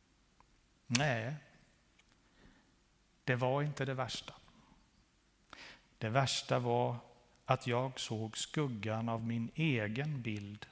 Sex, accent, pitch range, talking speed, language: male, native, 120-145 Hz, 95 wpm, Swedish